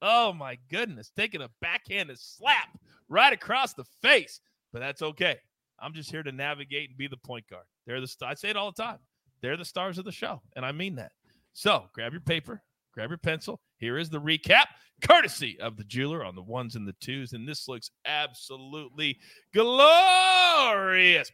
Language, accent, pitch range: English, American, 125-185 Hz